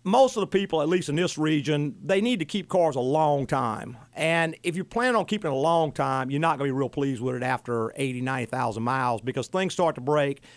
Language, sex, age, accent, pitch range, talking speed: English, male, 50-69, American, 135-175 Hz, 255 wpm